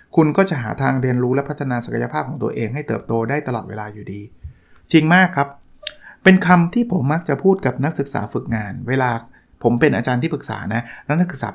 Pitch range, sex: 120-150 Hz, male